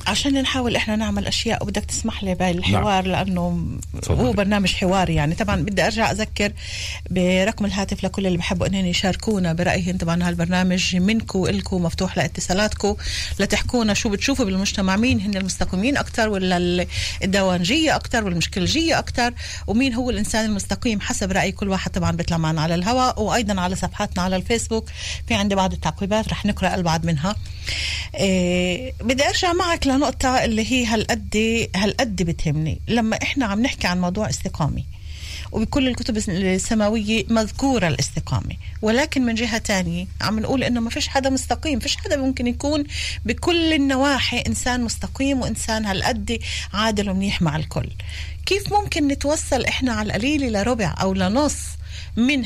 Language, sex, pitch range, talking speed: Hebrew, female, 180-250 Hz, 135 wpm